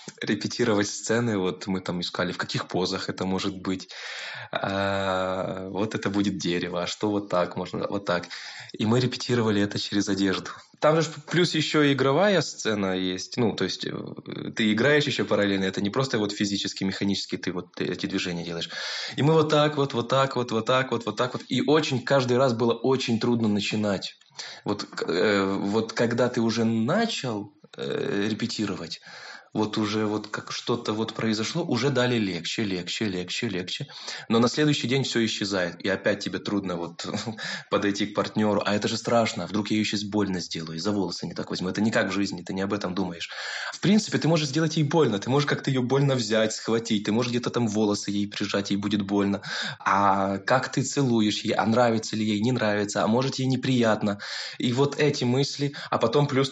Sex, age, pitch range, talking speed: male, 20-39, 100-130 Hz, 200 wpm